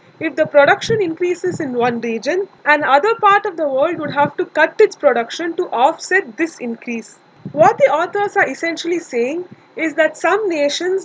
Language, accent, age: English, Indian, 20-39